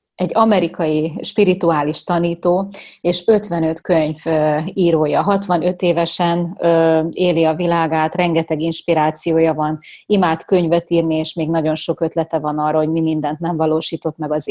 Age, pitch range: 30-49, 155-180 Hz